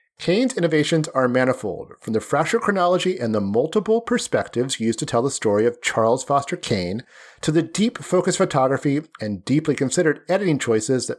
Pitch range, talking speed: 120-180 Hz, 165 wpm